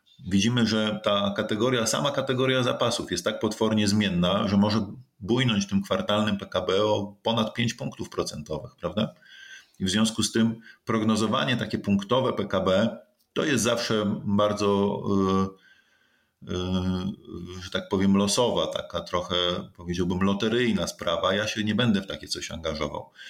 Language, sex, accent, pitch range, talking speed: Polish, male, native, 95-110 Hz, 140 wpm